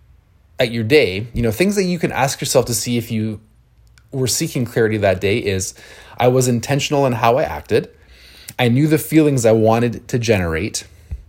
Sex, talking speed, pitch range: male, 190 wpm, 105-130 Hz